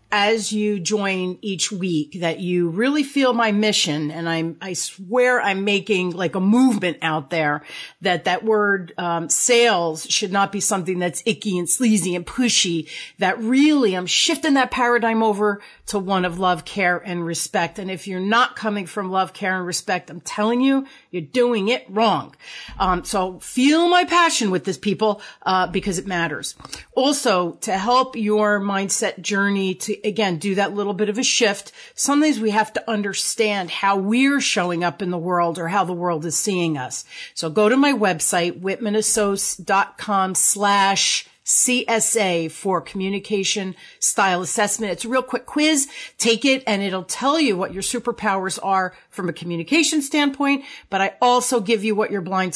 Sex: female